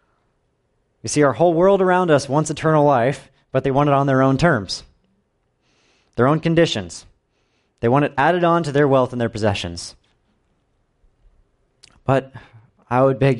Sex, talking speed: male, 160 wpm